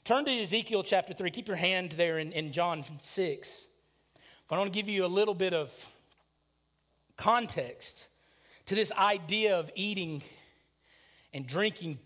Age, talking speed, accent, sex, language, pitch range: 40-59, 155 wpm, American, male, English, 175-250 Hz